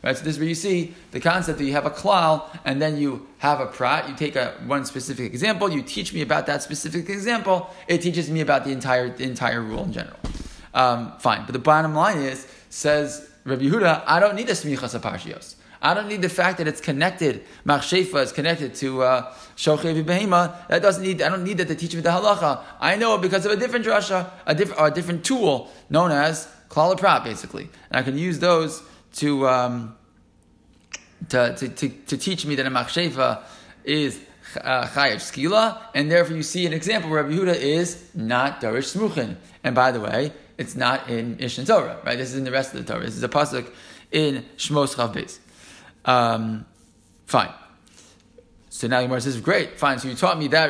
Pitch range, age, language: 130-170 Hz, 20-39, English